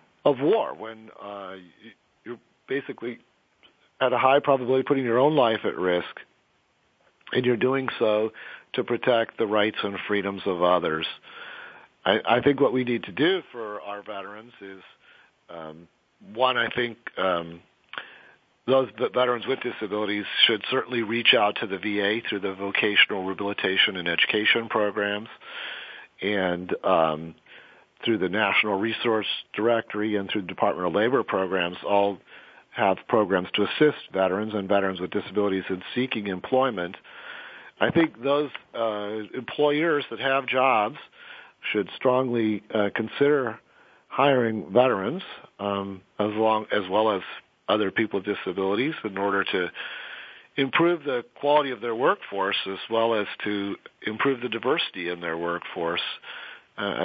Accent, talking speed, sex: American, 140 wpm, male